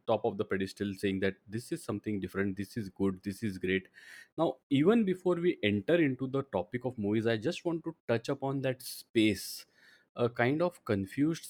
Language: English